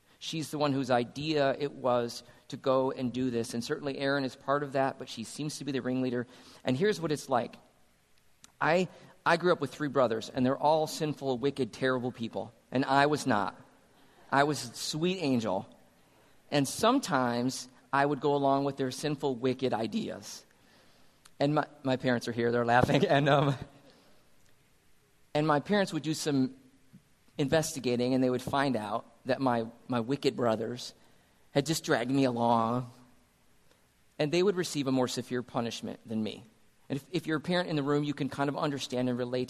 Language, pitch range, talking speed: English, 120-145 Hz, 185 wpm